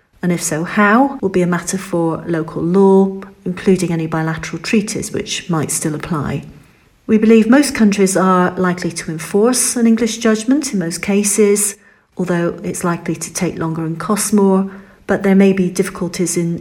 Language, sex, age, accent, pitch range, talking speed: English, female, 40-59, British, 170-200 Hz, 175 wpm